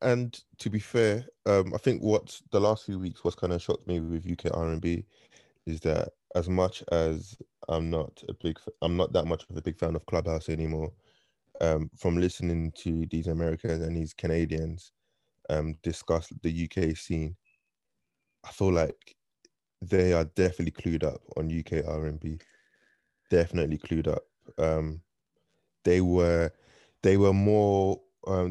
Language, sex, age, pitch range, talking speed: English, male, 20-39, 80-90 Hz, 160 wpm